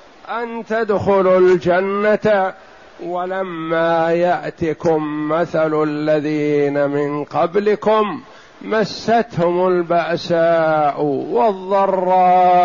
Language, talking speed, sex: Arabic, 55 wpm, male